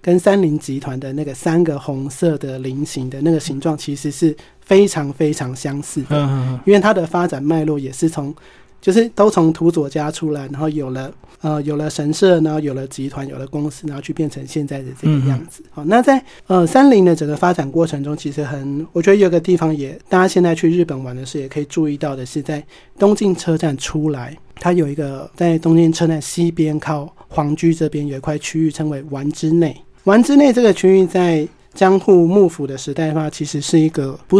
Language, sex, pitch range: Chinese, male, 145-170 Hz